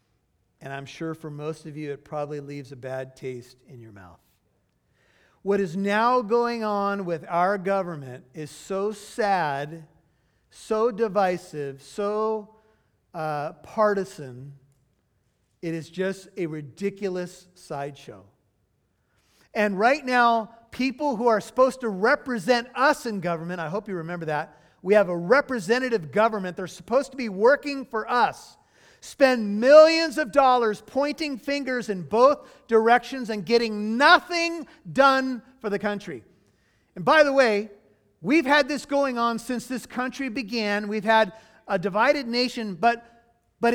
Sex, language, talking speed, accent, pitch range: male, English, 140 wpm, American, 170-250 Hz